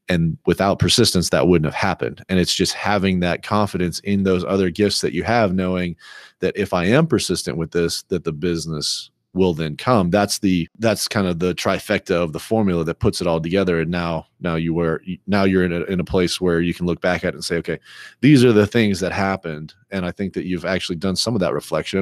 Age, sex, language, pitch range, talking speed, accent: 30-49, male, English, 85-100 Hz, 240 wpm, American